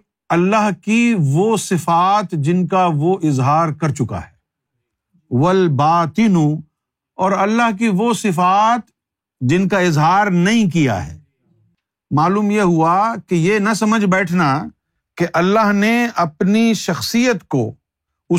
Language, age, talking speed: Urdu, 50-69, 125 wpm